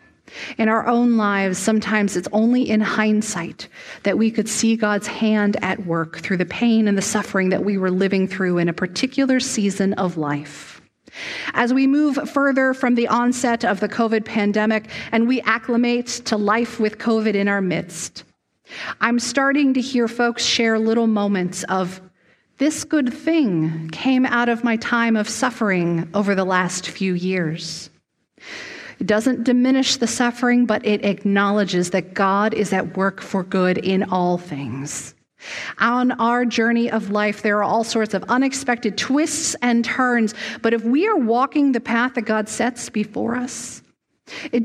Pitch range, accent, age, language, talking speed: 195-245 Hz, American, 40-59, English, 165 wpm